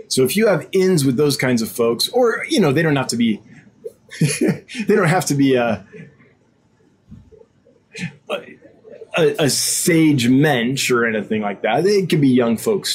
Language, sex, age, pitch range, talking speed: English, male, 20-39, 120-190 Hz, 170 wpm